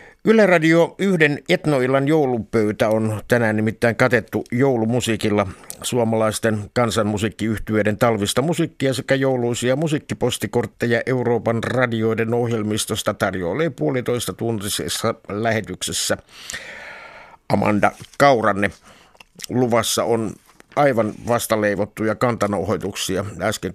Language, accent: Finnish, native